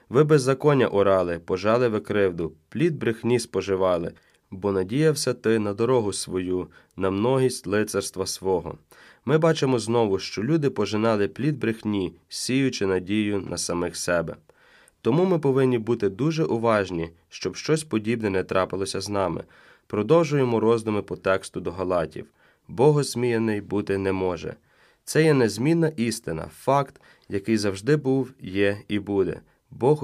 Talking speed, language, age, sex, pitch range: 130 wpm, Ukrainian, 20-39, male, 95-125 Hz